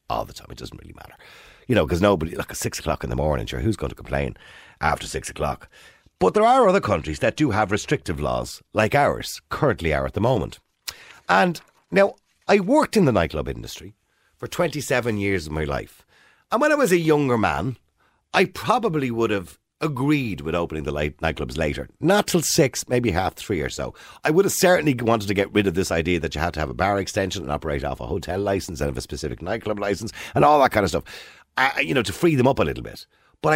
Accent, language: Irish, English